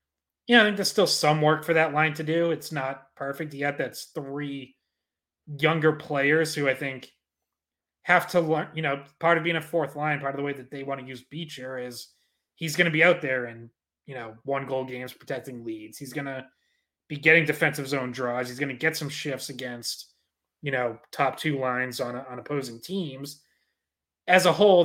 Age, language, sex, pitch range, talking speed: 20-39, English, male, 125-155 Hz, 210 wpm